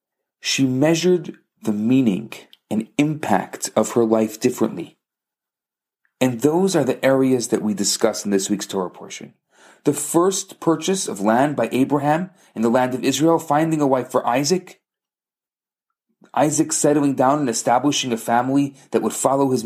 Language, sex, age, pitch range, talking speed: English, male, 40-59, 125-165 Hz, 155 wpm